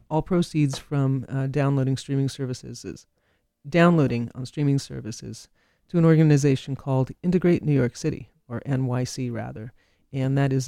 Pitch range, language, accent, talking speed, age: 130-155 Hz, English, American, 145 wpm, 40-59